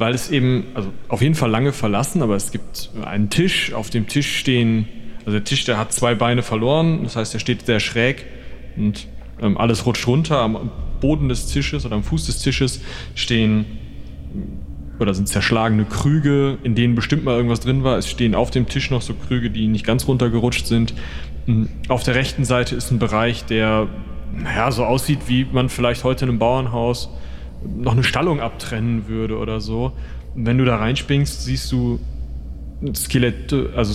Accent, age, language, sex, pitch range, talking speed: German, 30-49, German, male, 90-130 Hz, 185 wpm